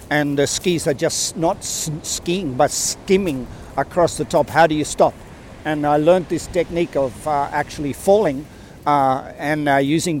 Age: 50-69